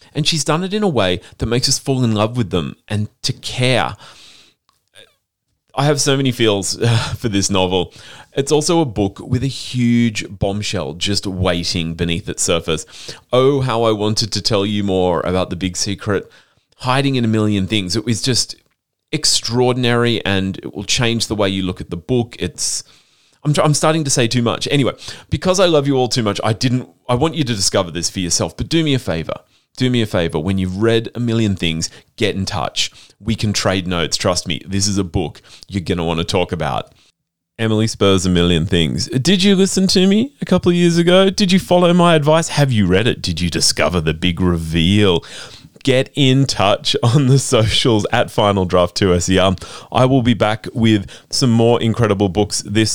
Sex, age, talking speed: male, 30-49, 205 wpm